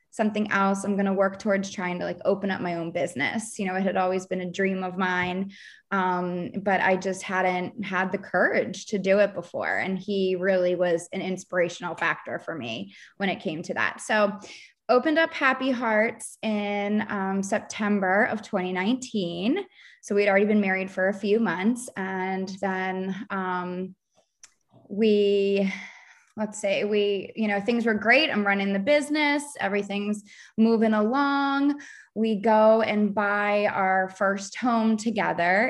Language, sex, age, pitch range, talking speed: English, female, 20-39, 185-215 Hz, 165 wpm